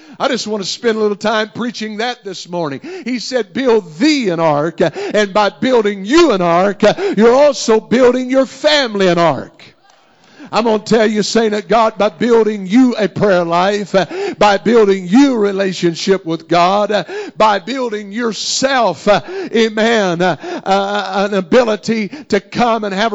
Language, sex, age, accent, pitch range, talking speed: English, male, 50-69, American, 190-255 Hz, 160 wpm